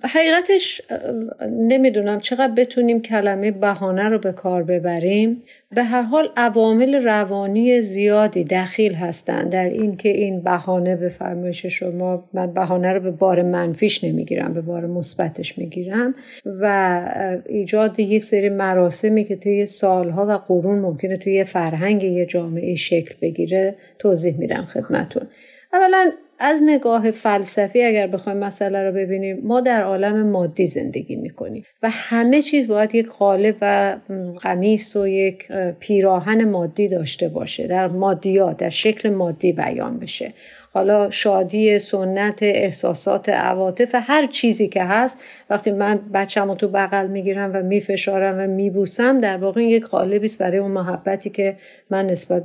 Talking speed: 140 wpm